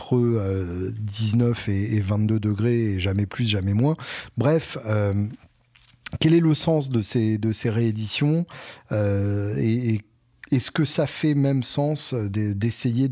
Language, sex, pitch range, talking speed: French, male, 105-130 Hz, 120 wpm